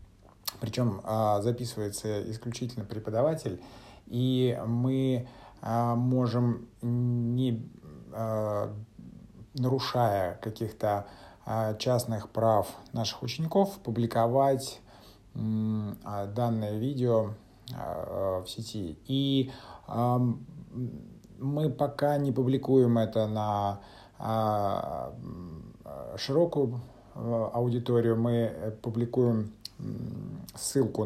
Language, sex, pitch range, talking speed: Russian, male, 105-125 Hz, 60 wpm